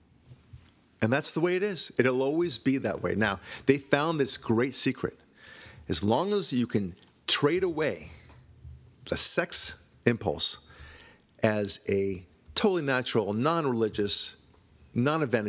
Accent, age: American, 50-69